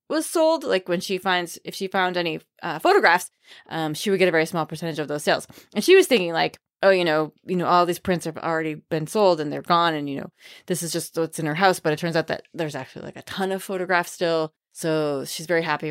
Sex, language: female, English